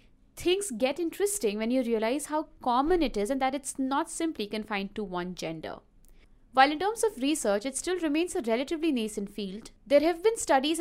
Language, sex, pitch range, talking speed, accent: English, female, 210-295 Hz, 195 wpm, Indian